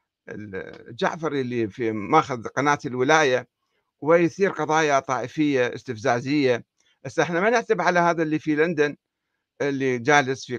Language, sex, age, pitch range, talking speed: Arabic, male, 60-79, 140-195 Hz, 125 wpm